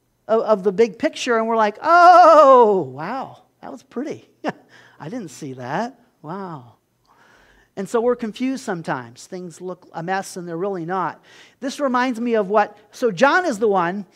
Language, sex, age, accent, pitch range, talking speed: English, male, 40-59, American, 195-255 Hz, 175 wpm